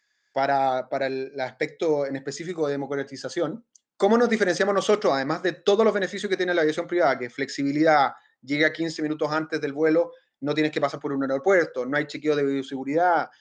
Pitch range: 145-195 Hz